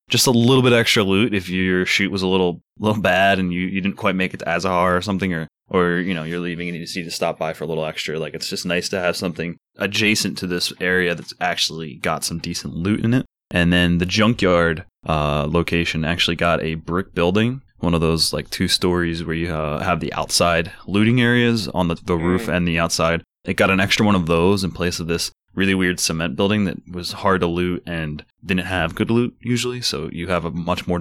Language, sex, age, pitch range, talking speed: English, male, 20-39, 85-100 Hz, 240 wpm